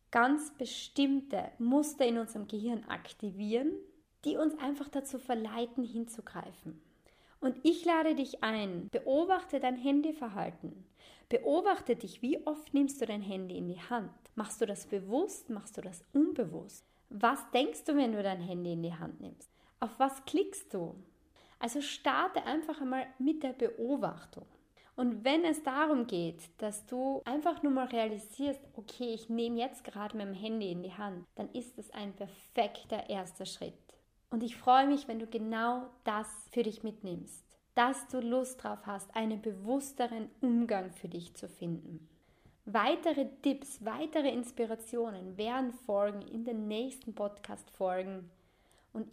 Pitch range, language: 210-270 Hz, German